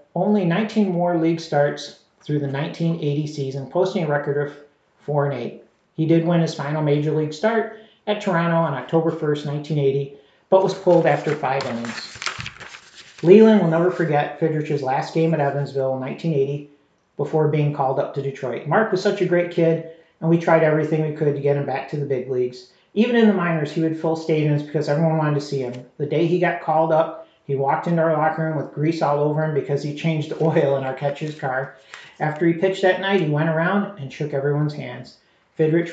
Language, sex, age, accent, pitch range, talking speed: English, male, 40-59, American, 145-170 Hz, 210 wpm